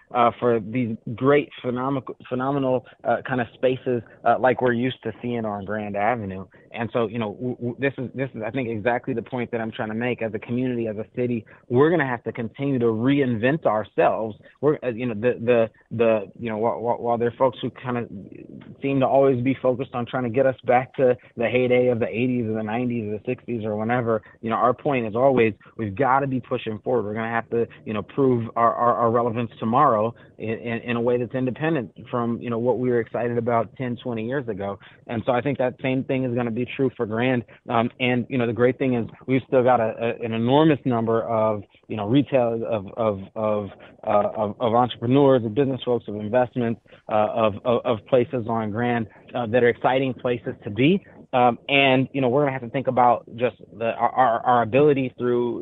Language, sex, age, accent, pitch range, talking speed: English, male, 30-49, American, 115-130 Hz, 235 wpm